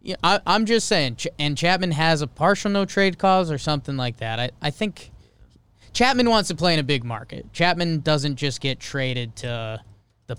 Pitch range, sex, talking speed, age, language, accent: 120-170 Hz, male, 210 wpm, 20-39, English, American